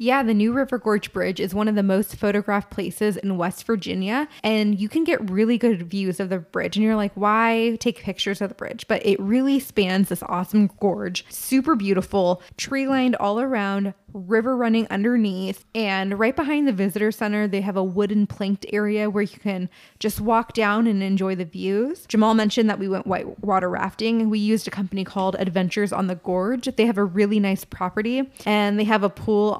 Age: 10-29